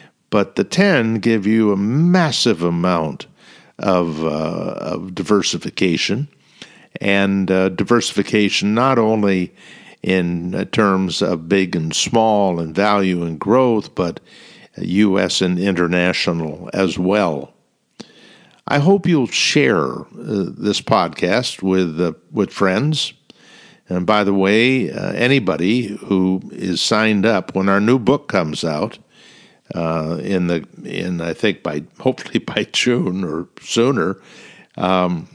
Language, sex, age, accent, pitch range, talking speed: English, male, 60-79, American, 90-110 Hz, 120 wpm